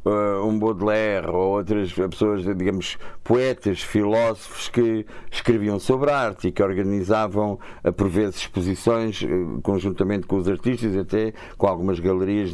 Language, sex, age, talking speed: Portuguese, male, 50-69, 130 wpm